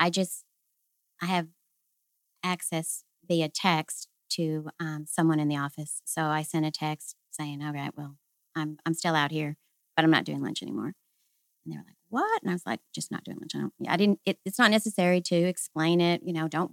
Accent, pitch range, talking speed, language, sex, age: American, 155-175 Hz, 220 wpm, English, female, 40-59